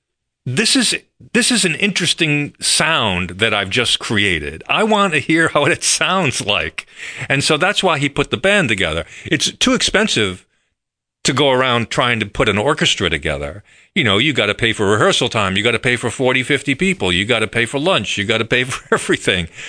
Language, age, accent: English, 50-69, American